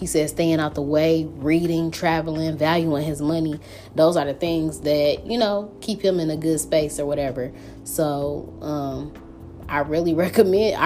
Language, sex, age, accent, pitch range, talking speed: English, female, 20-39, American, 145-170 Hz, 170 wpm